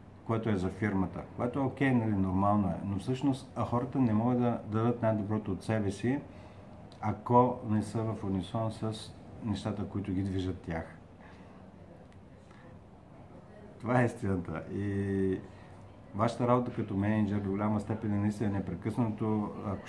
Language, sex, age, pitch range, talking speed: Bulgarian, male, 50-69, 95-115 Hz, 150 wpm